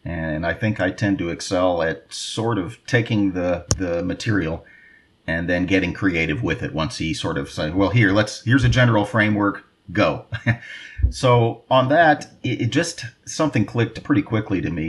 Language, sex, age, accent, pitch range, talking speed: English, male, 40-59, American, 90-120 Hz, 180 wpm